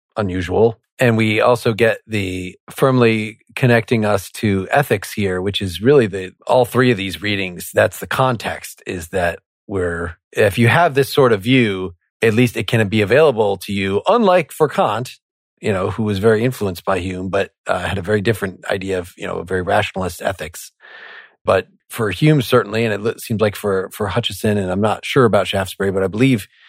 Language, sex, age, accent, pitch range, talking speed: English, male, 40-59, American, 100-125 Hz, 195 wpm